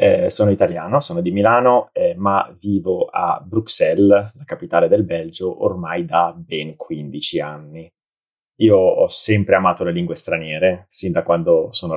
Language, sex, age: Italian, male, 30-49